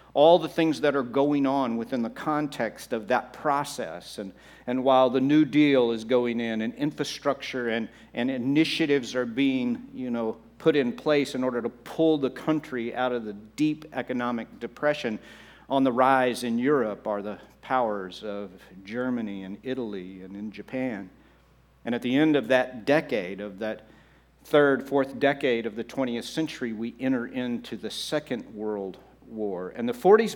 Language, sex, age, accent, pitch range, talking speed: English, male, 50-69, American, 115-150 Hz, 175 wpm